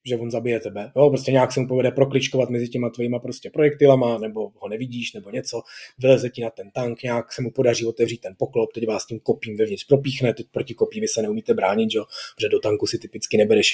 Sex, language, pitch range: male, Czech, 125-160 Hz